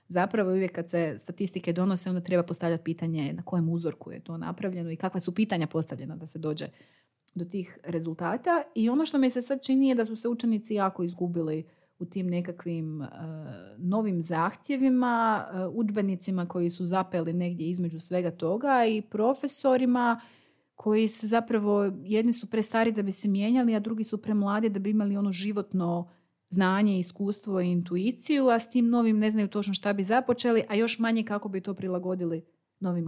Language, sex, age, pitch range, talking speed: Croatian, female, 30-49, 175-230 Hz, 180 wpm